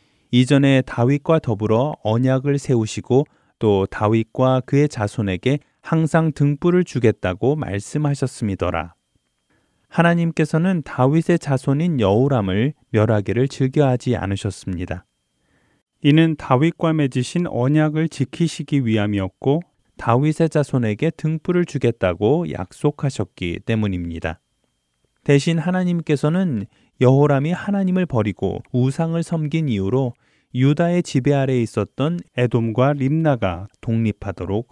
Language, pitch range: Korean, 110-150 Hz